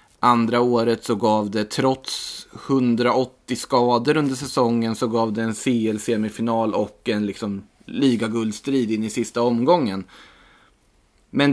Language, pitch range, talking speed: Swedish, 105-125 Hz, 125 wpm